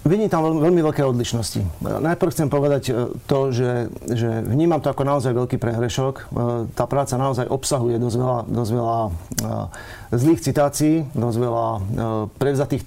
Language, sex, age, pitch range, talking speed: Slovak, male, 40-59, 120-140 Hz, 140 wpm